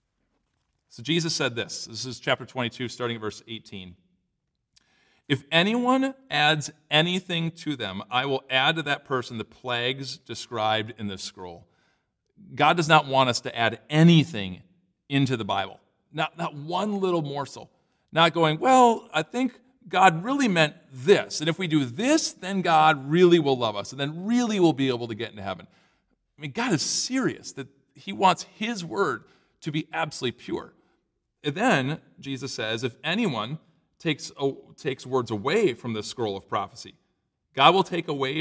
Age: 40-59